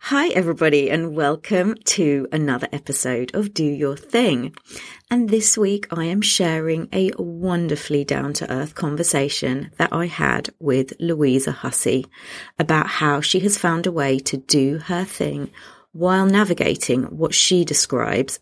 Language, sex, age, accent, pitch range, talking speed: English, female, 30-49, British, 140-190 Hz, 140 wpm